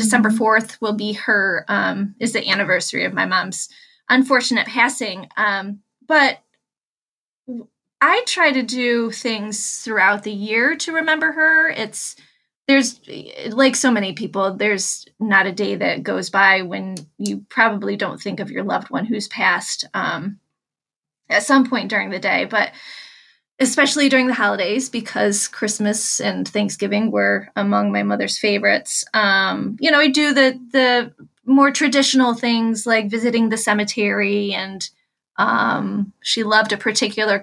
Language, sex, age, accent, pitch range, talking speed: English, female, 20-39, American, 200-250 Hz, 150 wpm